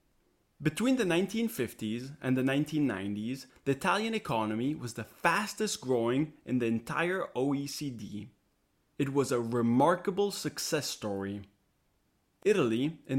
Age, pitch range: 30-49, 110-165 Hz